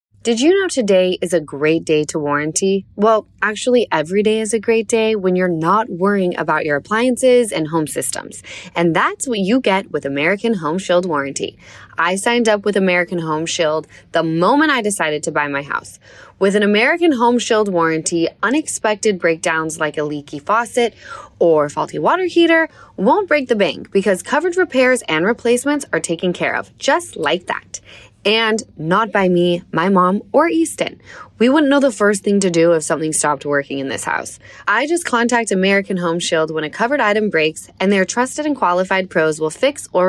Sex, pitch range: female, 165-235 Hz